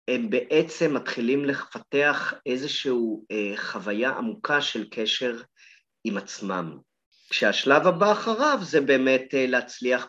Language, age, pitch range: Hebrew, 30-49, 120-145 Hz